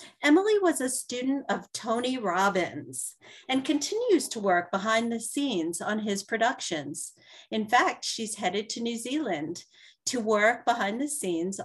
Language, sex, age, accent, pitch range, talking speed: English, female, 40-59, American, 185-250 Hz, 150 wpm